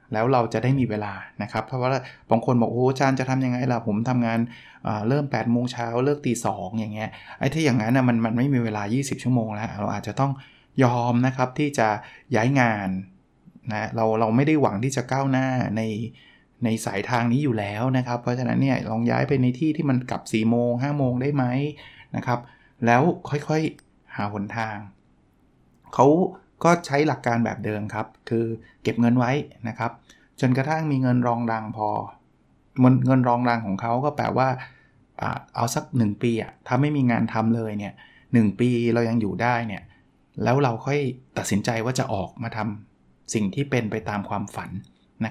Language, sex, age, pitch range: Thai, male, 20-39, 110-130 Hz